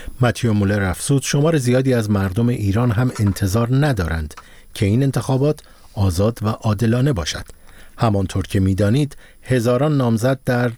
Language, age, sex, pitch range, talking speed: Persian, 50-69, male, 100-130 Hz, 135 wpm